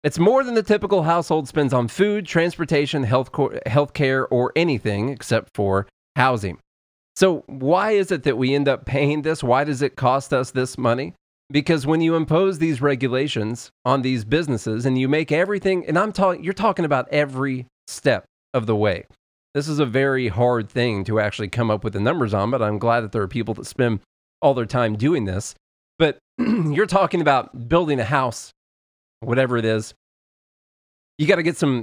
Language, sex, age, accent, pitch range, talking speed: English, male, 30-49, American, 115-150 Hz, 190 wpm